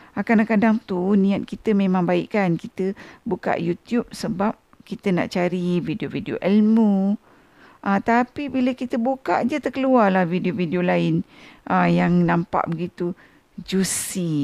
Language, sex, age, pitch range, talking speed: Malay, female, 50-69, 175-230 Hz, 130 wpm